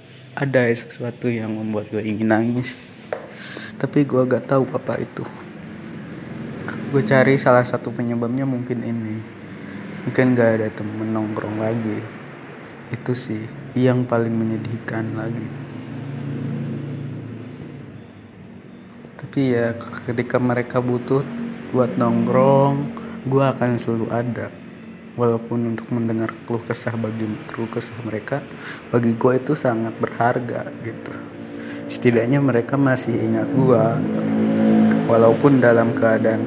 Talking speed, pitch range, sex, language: 110 wpm, 115-130 Hz, male, Indonesian